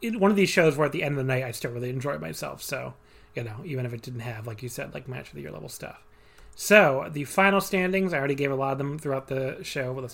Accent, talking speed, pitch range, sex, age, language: American, 300 wpm, 130-155 Hz, male, 30-49, English